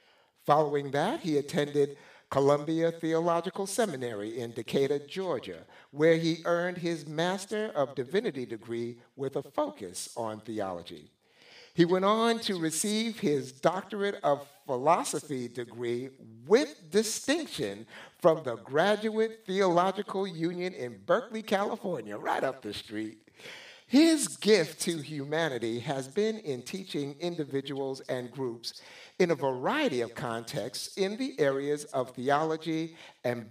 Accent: American